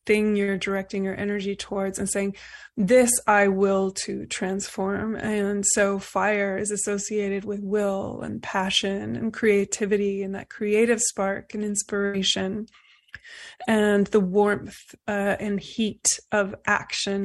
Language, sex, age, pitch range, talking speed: English, female, 20-39, 195-215 Hz, 130 wpm